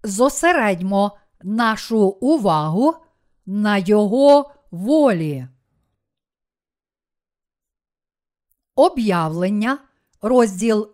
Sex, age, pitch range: female, 50-69, 200-270 Hz